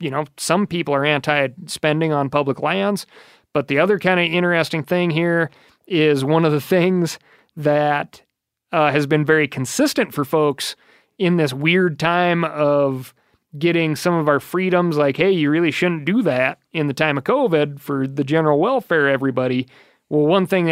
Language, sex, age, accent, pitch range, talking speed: English, male, 30-49, American, 140-165 Hz, 175 wpm